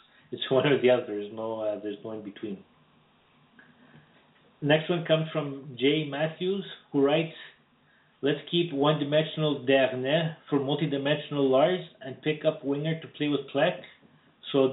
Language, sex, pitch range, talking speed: English, male, 130-150 Hz, 140 wpm